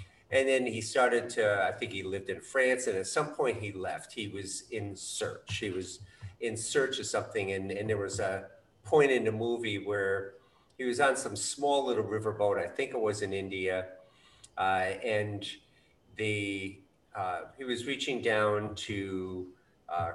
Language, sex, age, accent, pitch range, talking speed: English, male, 50-69, American, 95-115 Hz, 180 wpm